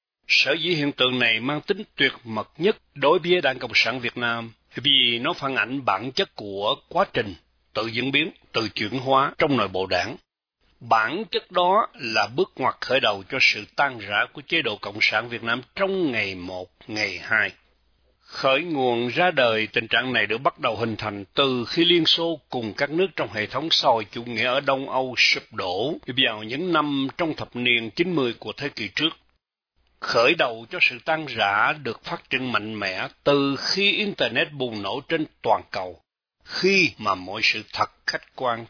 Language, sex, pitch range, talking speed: Vietnamese, male, 110-150 Hz, 195 wpm